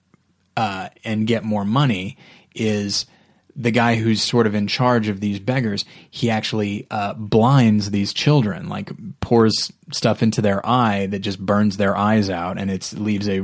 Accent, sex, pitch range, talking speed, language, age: American, male, 100-120 Hz, 170 wpm, English, 30-49